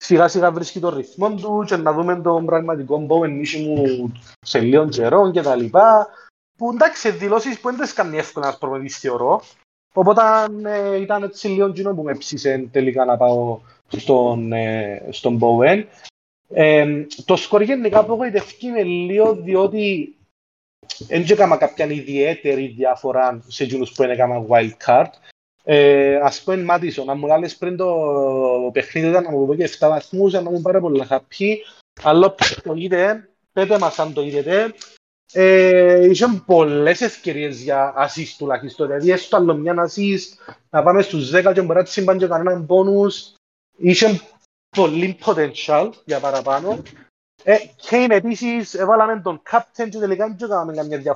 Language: Greek